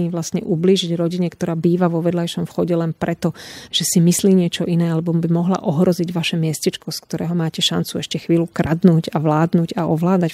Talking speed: 185 wpm